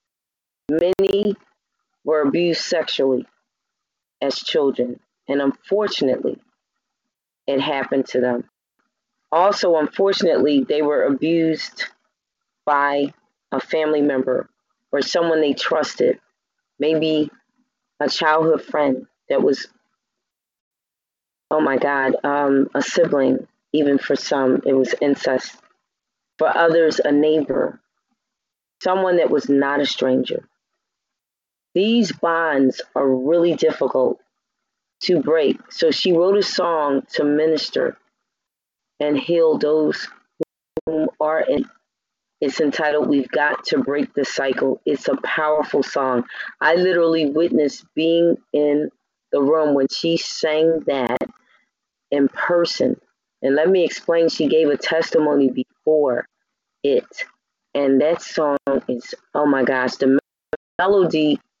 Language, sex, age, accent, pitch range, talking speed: English, female, 30-49, American, 140-170 Hz, 115 wpm